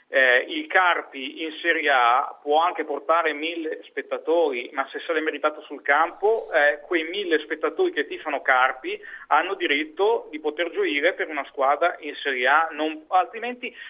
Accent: native